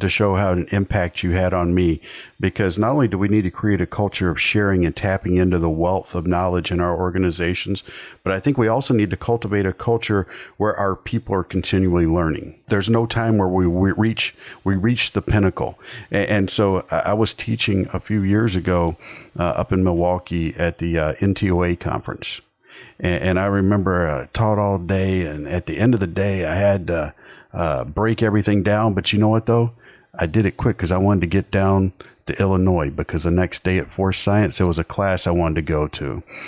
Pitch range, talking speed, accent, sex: 90-105 Hz, 205 wpm, American, male